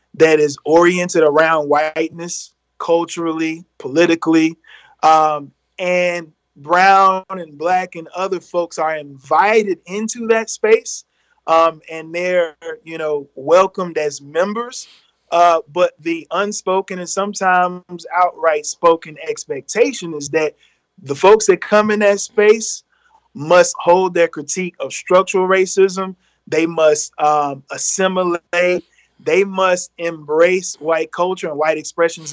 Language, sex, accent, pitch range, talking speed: English, male, American, 155-190 Hz, 120 wpm